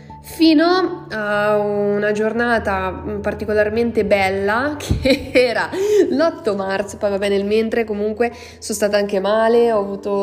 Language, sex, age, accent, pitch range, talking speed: Italian, female, 20-39, native, 200-245 Hz, 130 wpm